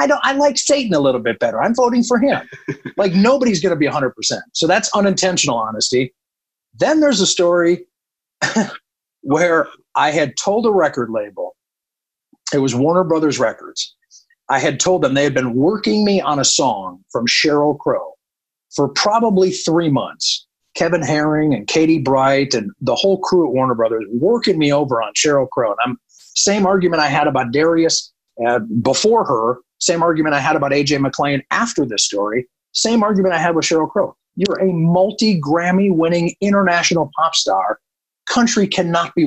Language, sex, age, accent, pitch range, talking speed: English, male, 50-69, American, 140-190 Hz, 180 wpm